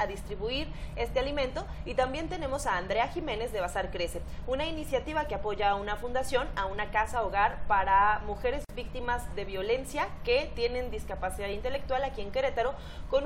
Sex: female